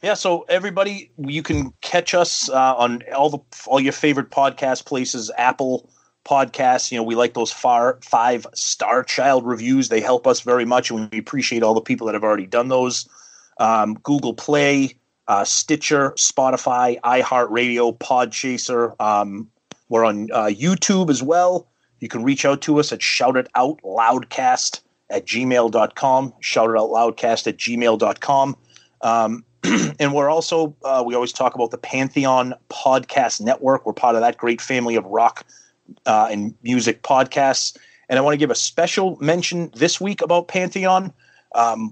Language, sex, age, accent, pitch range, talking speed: English, male, 30-49, American, 115-150 Hz, 170 wpm